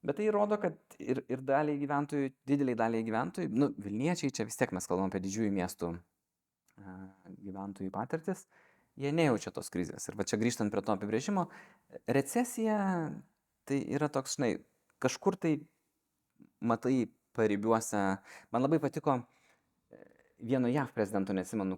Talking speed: 140 wpm